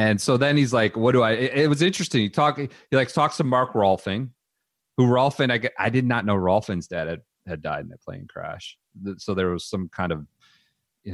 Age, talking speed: 30-49, 230 wpm